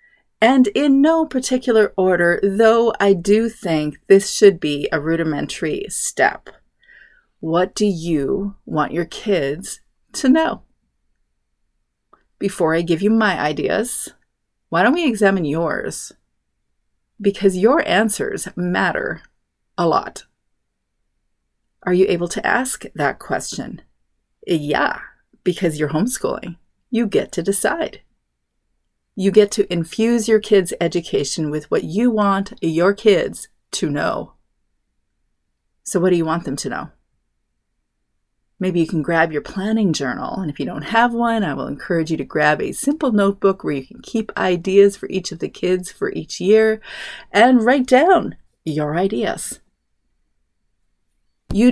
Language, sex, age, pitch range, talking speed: English, female, 30-49, 150-215 Hz, 140 wpm